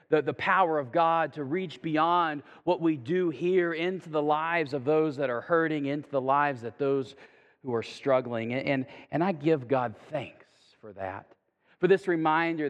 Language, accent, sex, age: English, American, male, 40-59